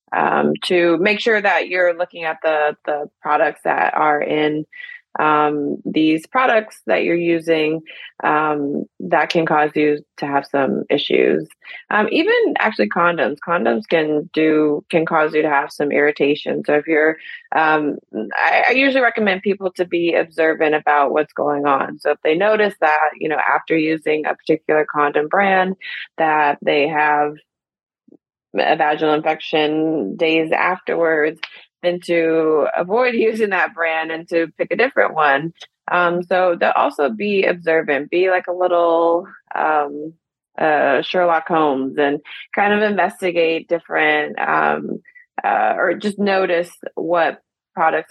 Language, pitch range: English, 150-180 Hz